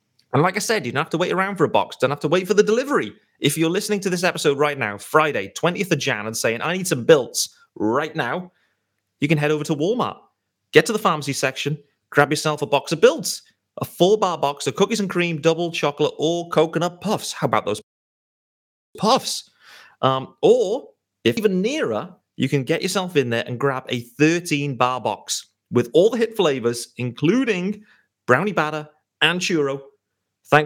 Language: English